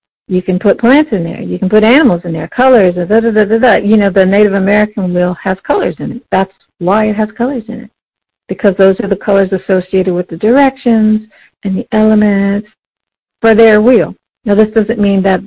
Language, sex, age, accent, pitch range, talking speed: English, female, 50-69, American, 180-220 Hz, 215 wpm